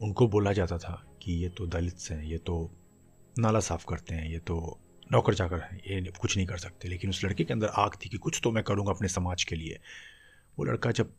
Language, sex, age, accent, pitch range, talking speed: Hindi, male, 30-49, native, 90-105 Hz, 240 wpm